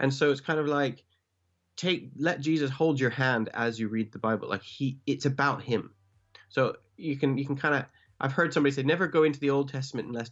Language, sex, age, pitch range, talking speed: English, male, 30-49, 110-140 Hz, 235 wpm